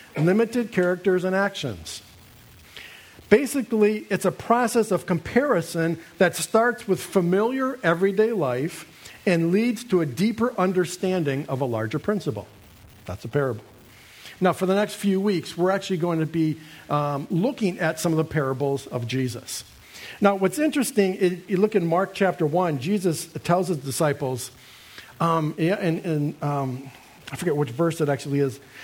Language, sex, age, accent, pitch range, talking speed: English, male, 50-69, American, 135-195 Hz, 150 wpm